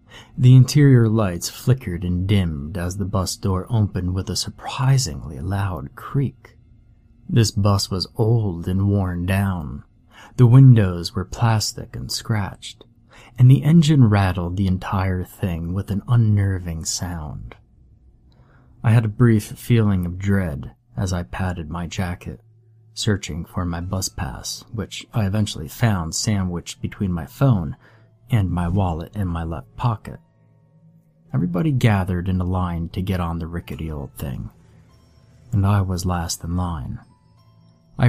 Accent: American